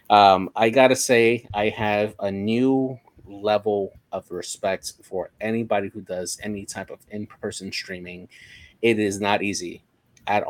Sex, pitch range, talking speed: male, 95-105 Hz, 150 wpm